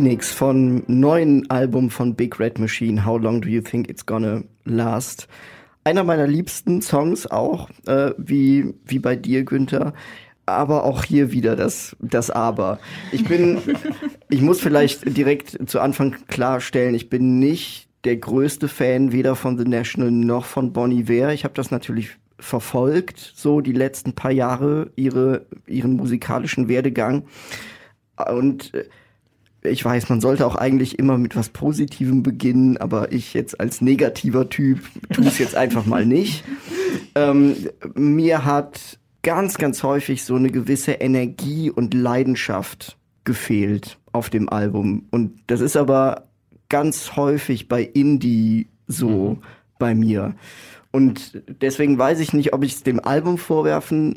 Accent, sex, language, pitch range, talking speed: German, male, German, 120-145 Hz, 150 wpm